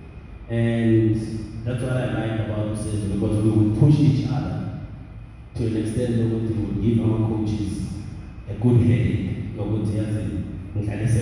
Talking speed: 130 wpm